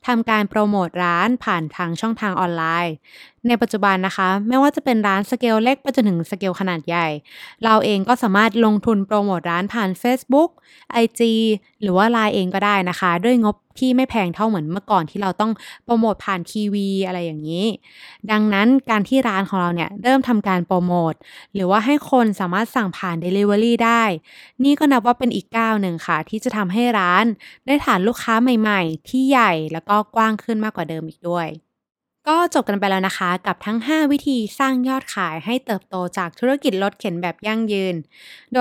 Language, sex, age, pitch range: Thai, female, 20-39, 185-240 Hz